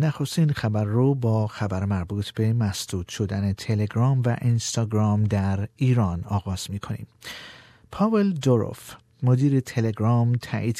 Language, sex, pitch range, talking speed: Persian, male, 105-130 Hz, 115 wpm